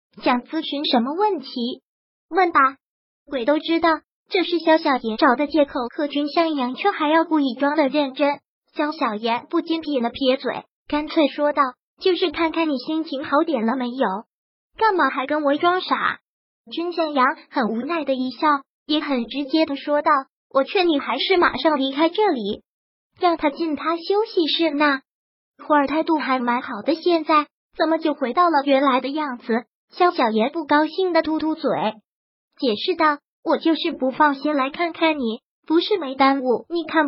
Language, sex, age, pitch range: Chinese, male, 20-39, 270-330 Hz